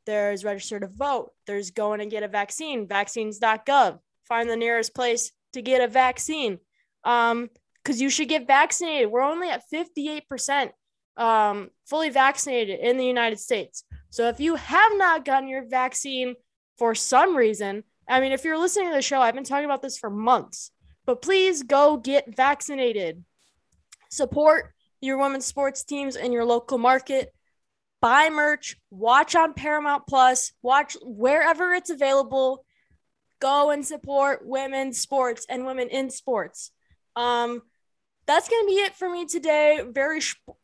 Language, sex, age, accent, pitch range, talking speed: English, female, 20-39, American, 225-285 Hz, 155 wpm